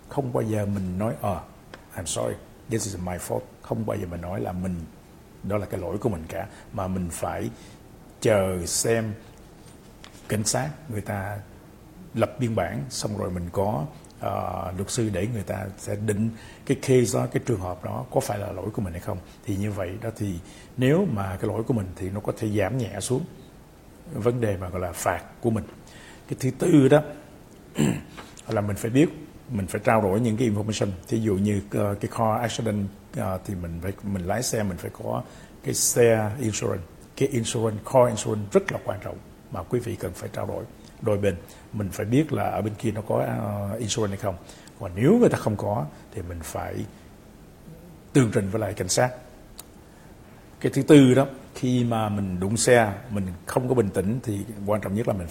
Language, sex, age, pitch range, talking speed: English, male, 60-79, 100-120 Hz, 205 wpm